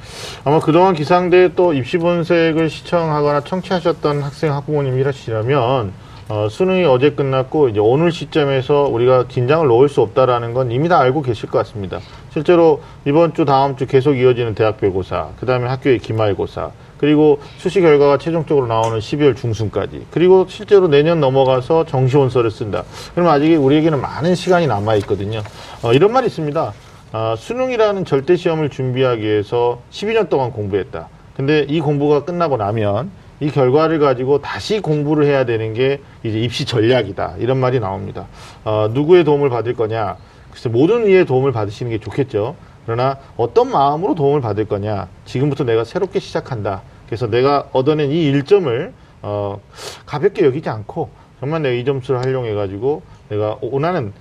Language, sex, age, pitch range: Korean, male, 40-59, 115-155 Hz